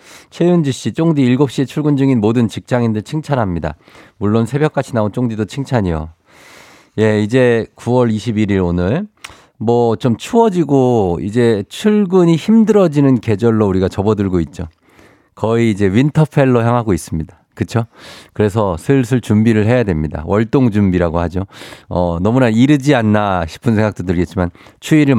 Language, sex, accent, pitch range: Korean, male, native, 95-135 Hz